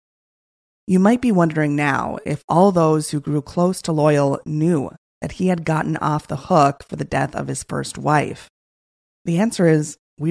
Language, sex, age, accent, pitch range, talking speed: English, female, 20-39, American, 145-180 Hz, 185 wpm